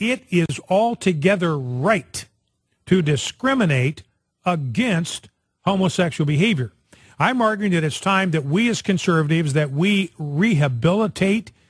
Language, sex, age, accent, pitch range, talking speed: English, male, 40-59, American, 145-205 Hz, 110 wpm